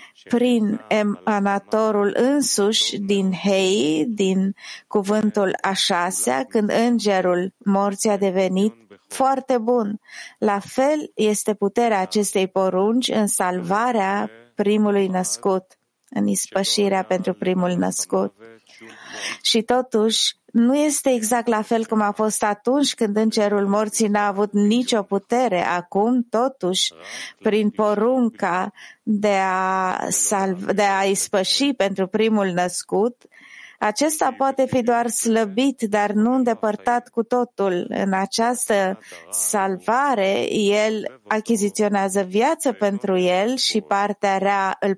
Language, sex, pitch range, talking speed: English, female, 195-235 Hz, 110 wpm